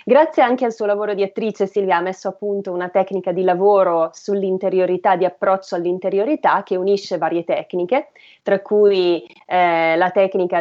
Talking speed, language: 165 wpm, Italian